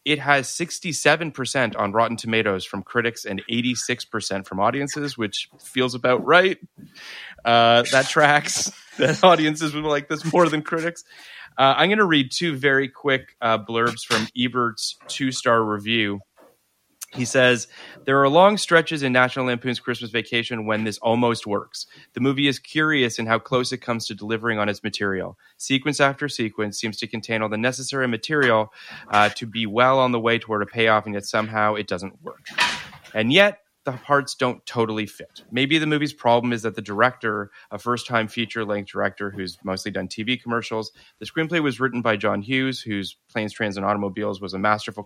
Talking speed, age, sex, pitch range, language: 185 wpm, 30-49, male, 105-130 Hz, English